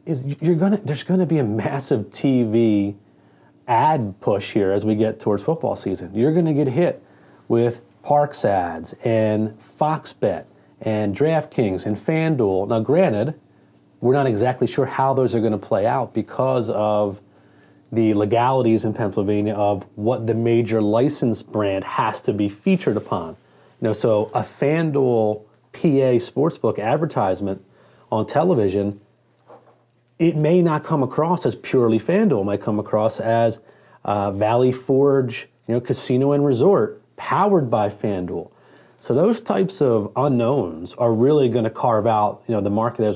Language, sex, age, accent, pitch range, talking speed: English, male, 30-49, American, 105-145 Hz, 155 wpm